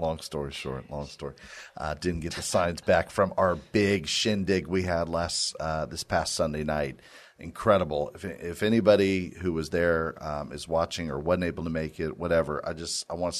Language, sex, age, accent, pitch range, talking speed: English, male, 40-59, American, 70-80 Hz, 200 wpm